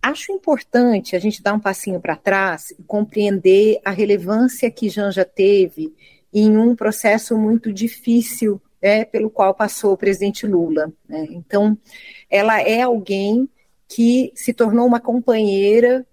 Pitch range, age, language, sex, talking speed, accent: 190-245 Hz, 40-59, Portuguese, female, 140 wpm, Brazilian